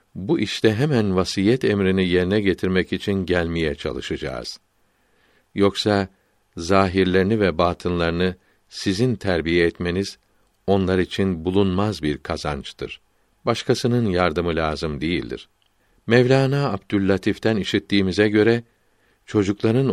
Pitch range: 90-105 Hz